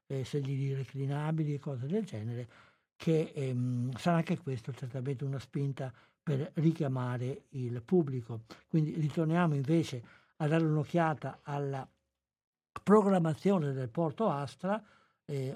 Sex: male